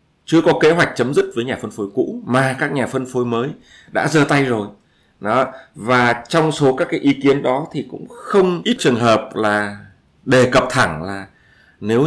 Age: 20-39